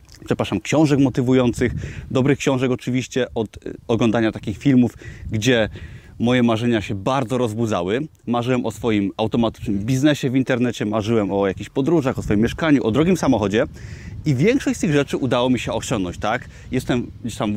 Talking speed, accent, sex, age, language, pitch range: 155 wpm, native, male, 30-49, Polish, 115-145 Hz